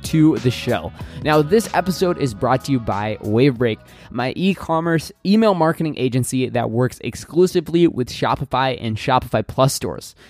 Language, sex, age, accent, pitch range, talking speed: English, male, 20-39, American, 120-160 Hz, 150 wpm